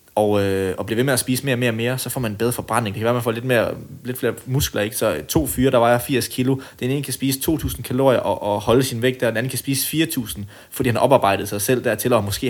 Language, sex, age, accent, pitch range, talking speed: Danish, male, 20-39, native, 105-130 Hz, 305 wpm